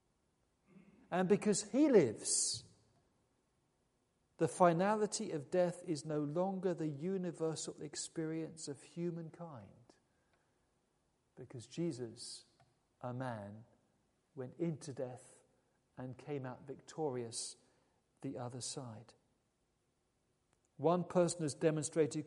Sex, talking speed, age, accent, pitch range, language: male, 90 wpm, 50-69, British, 135-195 Hz, English